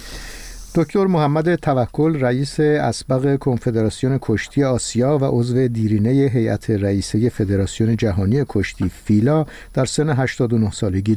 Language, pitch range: Persian, 110-135 Hz